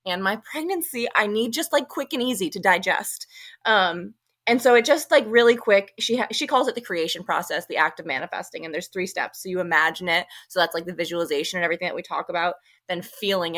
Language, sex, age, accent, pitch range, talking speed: English, female, 20-39, American, 175-225 Hz, 235 wpm